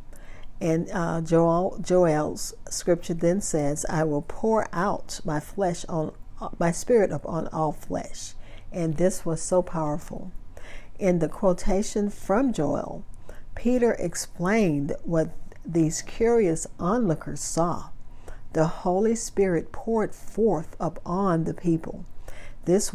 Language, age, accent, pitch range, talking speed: English, 50-69, American, 155-200 Hz, 120 wpm